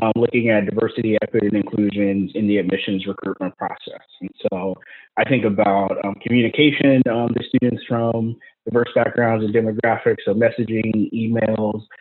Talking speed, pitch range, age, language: 155 wpm, 105-115 Hz, 20-39, English